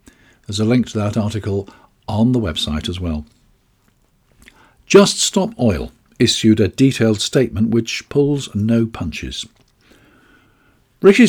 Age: 50-69